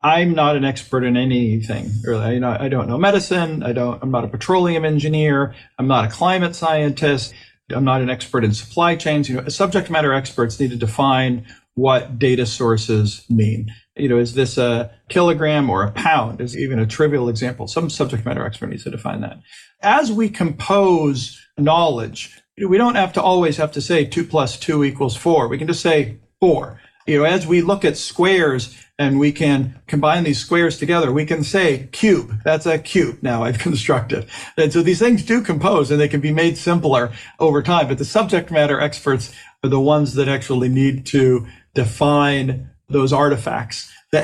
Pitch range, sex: 125-165 Hz, male